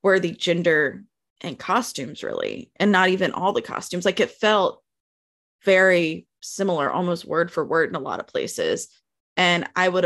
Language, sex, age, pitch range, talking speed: English, female, 20-39, 170-215 Hz, 175 wpm